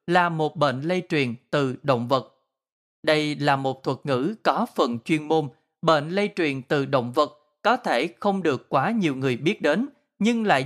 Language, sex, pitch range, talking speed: Vietnamese, male, 140-185 Hz, 190 wpm